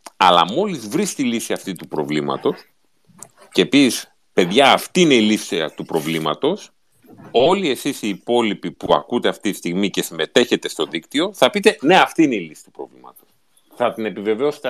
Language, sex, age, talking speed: Greek, male, 40-59, 170 wpm